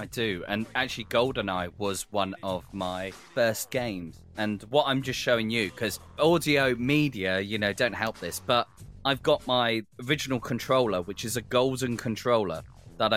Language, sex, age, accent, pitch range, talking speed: English, male, 20-39, British, 105-145 Hz, 170 wpm